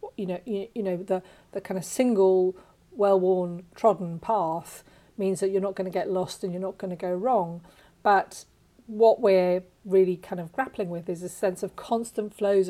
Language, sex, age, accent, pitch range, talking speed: English, female, 40-59, British, 185-215 Hz, 200 wpm